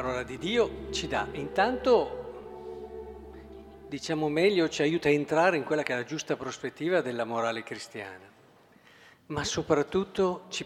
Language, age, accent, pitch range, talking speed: Italian, 50-69, native, 135-185 Hz, 145 wpm